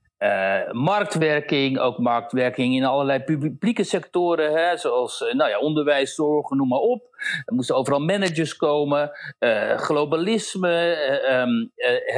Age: 60-79